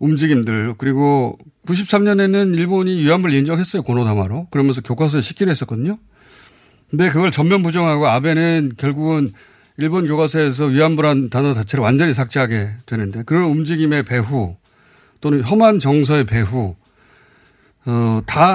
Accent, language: native, Korean